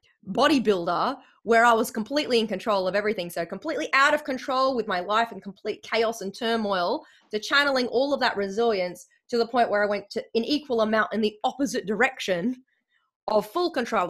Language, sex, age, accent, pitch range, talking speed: English, female, 20-39, Australian, 190-250 Hz, 190 wpm